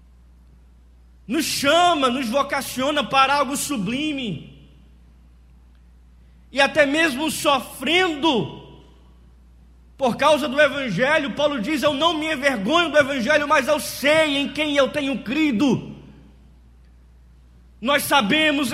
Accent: Brazilian